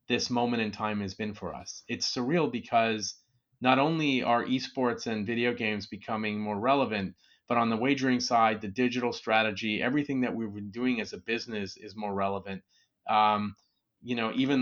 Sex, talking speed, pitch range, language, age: male, 180 wpm, 105-130 Hz, English, 30-49